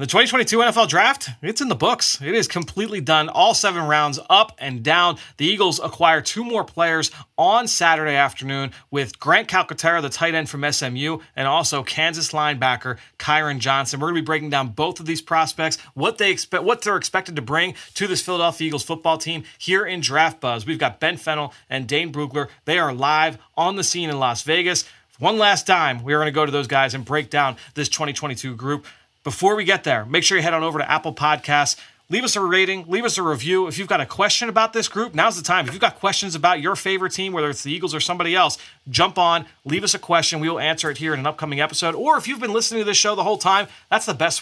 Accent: American